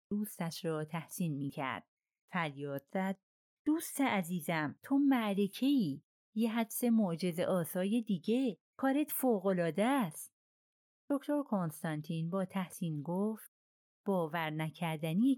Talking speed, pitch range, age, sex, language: 100 wpm, 155-225 Hz, 40-59, female, Persian